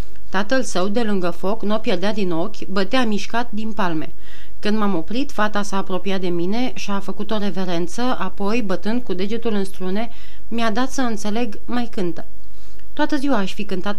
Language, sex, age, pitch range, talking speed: Romanian, female, 30-49, 190-230 Hz, 190 wpm